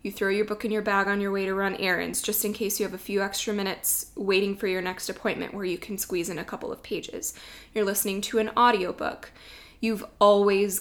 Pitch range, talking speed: 185-215 Hz, 240 wpm